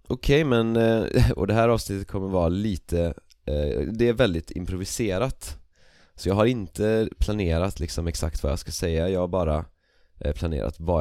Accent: native